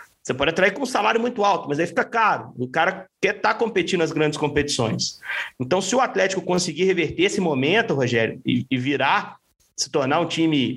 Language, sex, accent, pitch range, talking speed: Portuguese, male, Brazilian, 150-195 Hz, 195 wpm